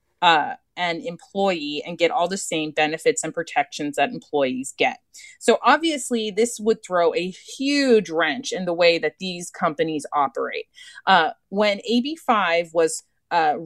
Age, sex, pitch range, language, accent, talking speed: 30-49, female, 160-230 Hz, English, American, 155 wpm